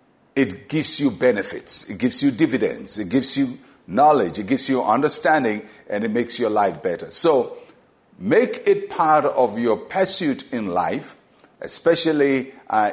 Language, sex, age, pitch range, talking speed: English, male, 50-69, 110-155 Hz, 155 wpm